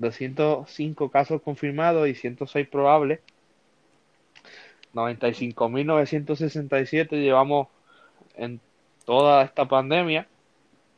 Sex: male